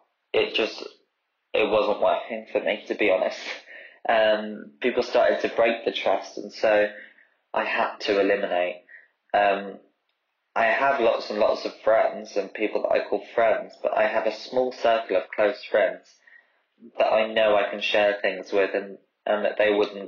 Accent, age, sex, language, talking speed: British, 20-39, male, English, 175 wpm